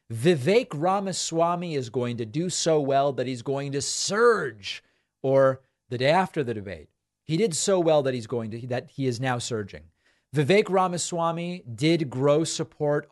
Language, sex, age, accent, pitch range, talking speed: English, male, 40-59, American, 120-160 Hz, 170 wpm